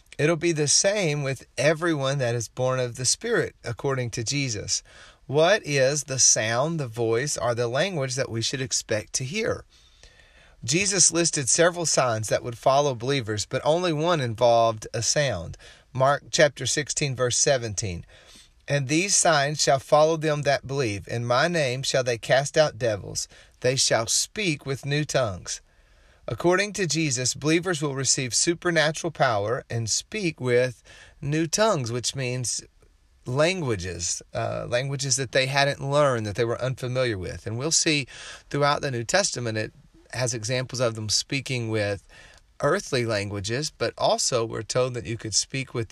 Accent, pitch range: American, 115-150 Hz